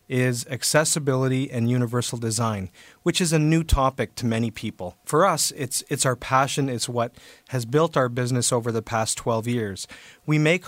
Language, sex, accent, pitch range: English, male, American, 120-145 Hz